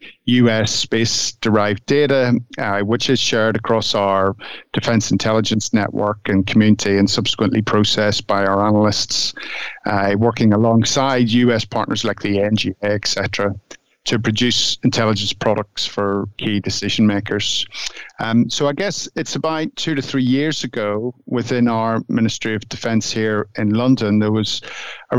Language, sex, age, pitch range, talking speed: English, male, 50-69, 105-125 Hz, 145 wpm